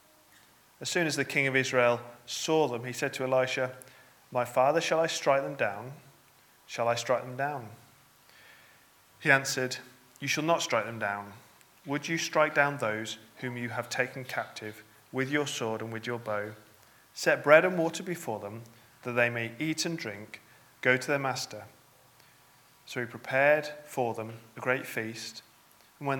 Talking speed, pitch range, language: 175 wpm, 115-140 Hz, English